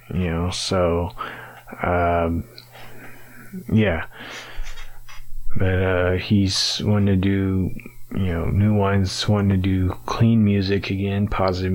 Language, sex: English, male